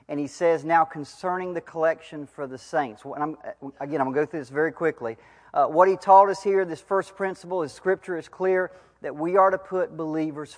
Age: 40-59